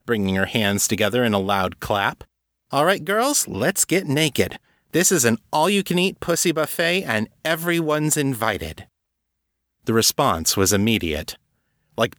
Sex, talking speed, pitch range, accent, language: male, 140 wpm, 90-120 Hz, American, English